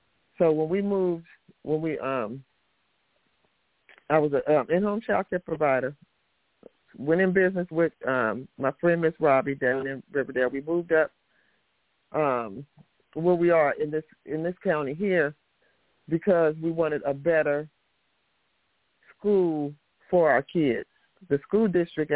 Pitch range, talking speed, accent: 140-175 Hz, 145 wpm, American